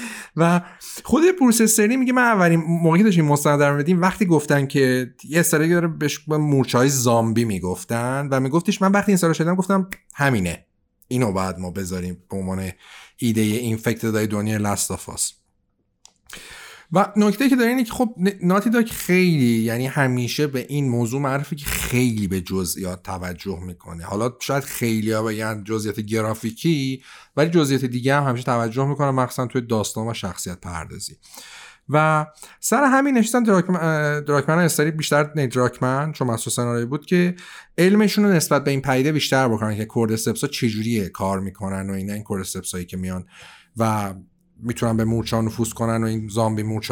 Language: Persian